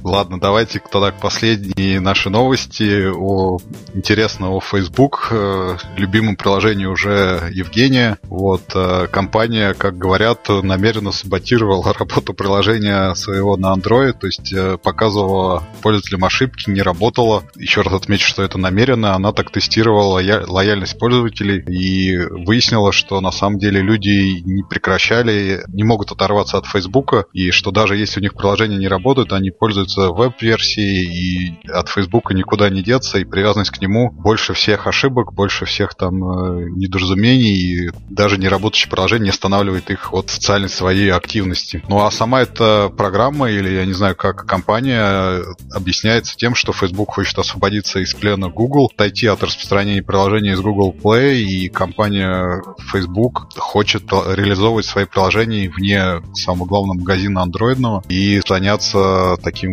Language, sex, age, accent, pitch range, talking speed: Russian, male, 20-39, native, 95-110 Hz, 140 wpm